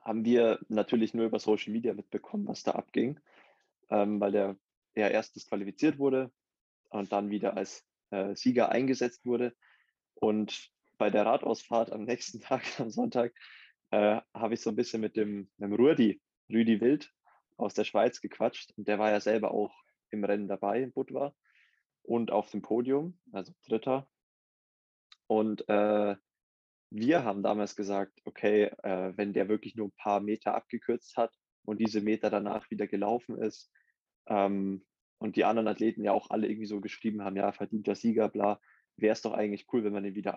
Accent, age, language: German, 20-39, German